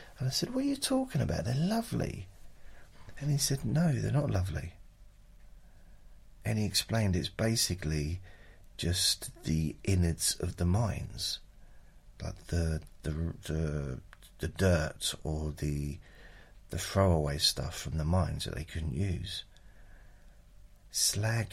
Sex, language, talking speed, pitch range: male, English, 130 wpm, 85-105 Hz